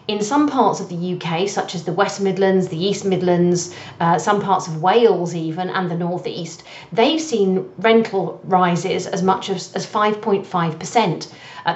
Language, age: English, 40-59